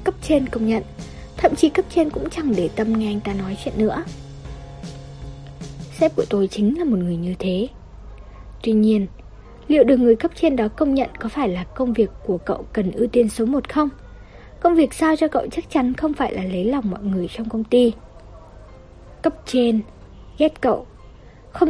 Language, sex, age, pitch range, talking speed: Vietnamese, female, 20-39, 195-295 Hz, 200 wpm